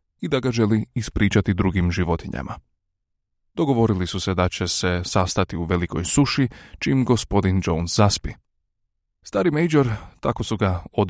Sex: male